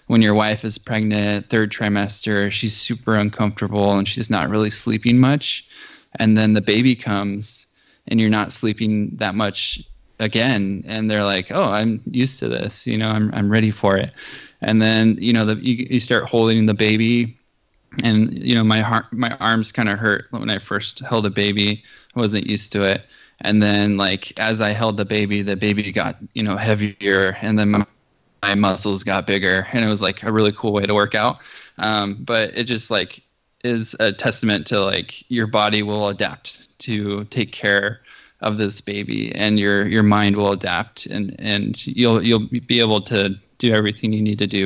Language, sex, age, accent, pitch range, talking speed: English, male, 20-39, American, 100-110 Hz, 195 wpm